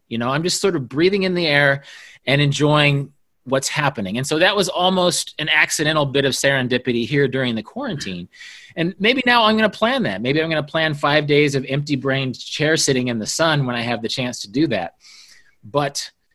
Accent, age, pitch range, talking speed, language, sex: American, 30-49, 120-160 Hz, 215 wpm, English, male